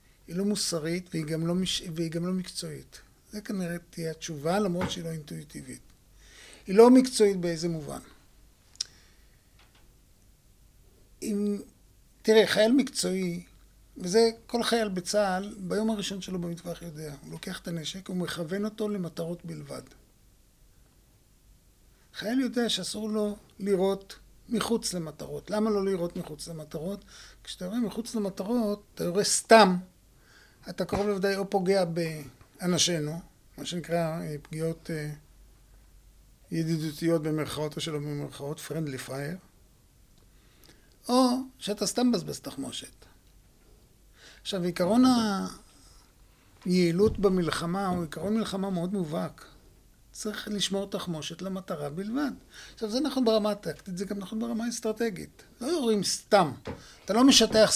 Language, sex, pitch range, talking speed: Hebrew, male, 165-215 Hz, 120 wpm